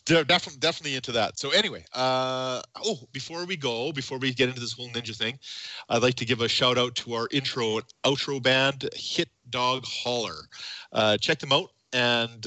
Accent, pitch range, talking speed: American, 110-135 Hz, 190 wpm